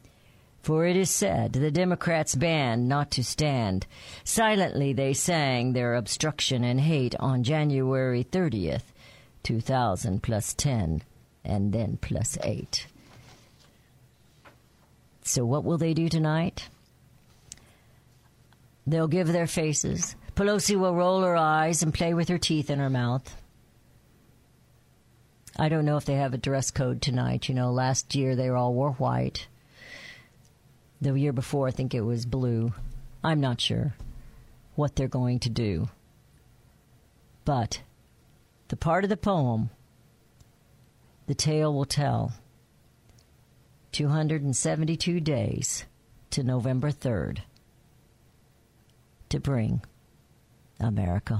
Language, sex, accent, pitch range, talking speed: English, female, American, 115-155 Hz, 120 wpm